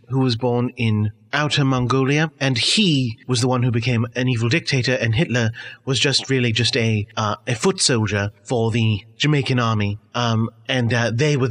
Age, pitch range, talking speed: 30-49, 110-135 Hz, 190 wpm